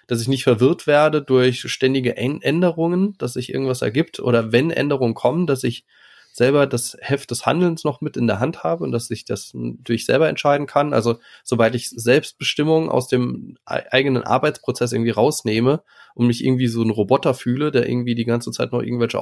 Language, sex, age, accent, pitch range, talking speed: German, male, 20-39, German, 115-140 Hz, 190 wpm